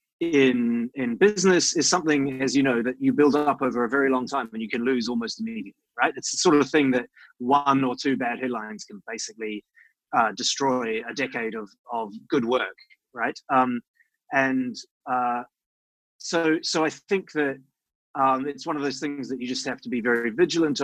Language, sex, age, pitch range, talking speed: English, male, 20-39, 120-150 Hz, 195 wpm